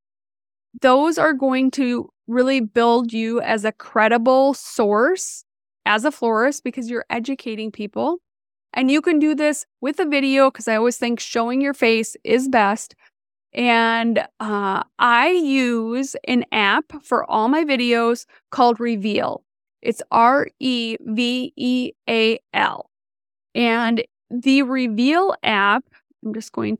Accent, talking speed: American, 125 wpm